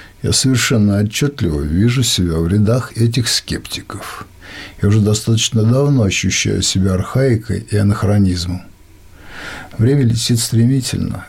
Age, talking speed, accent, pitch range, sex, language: 50-69, 110 wpm, native, 95-115 Hz, male, Russian